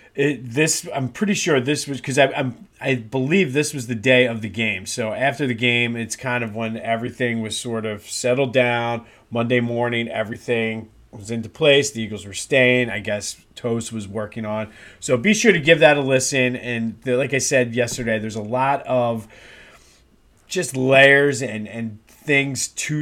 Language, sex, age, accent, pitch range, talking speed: English, male, 30-49, American, 115-140 Hz, 190 wpm